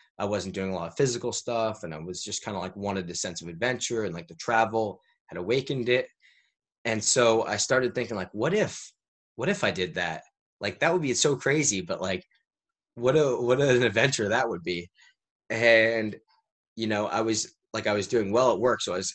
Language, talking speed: English, 225 wpm